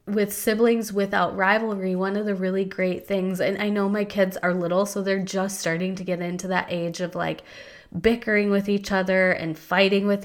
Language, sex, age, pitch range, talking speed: English, female, 20-39, 185-210 Hz, 205 wpm